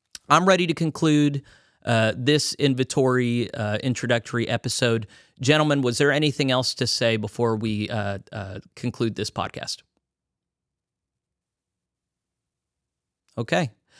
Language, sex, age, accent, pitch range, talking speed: English, male, 30-49, American, 110-140 Hz, 105 wpm